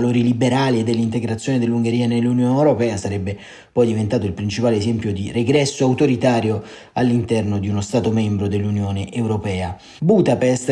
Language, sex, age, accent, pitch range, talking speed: Italian, male, 30-49, native, 110-130 Hz, 135 wpm